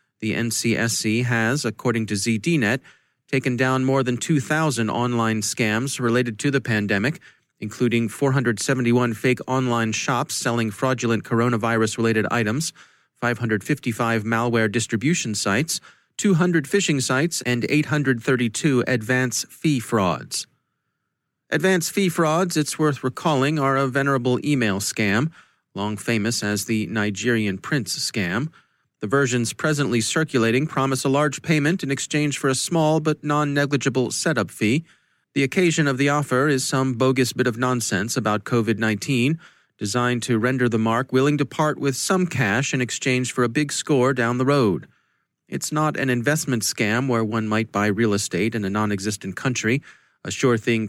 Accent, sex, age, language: American, male, 30-49, English